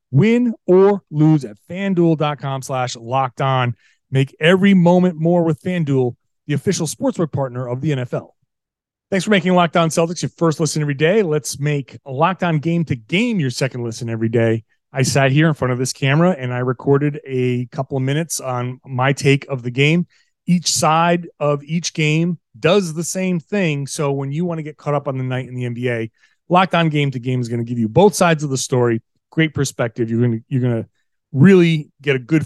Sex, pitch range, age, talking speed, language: male, 125-165 Hz, 30-49, 210 wpm, English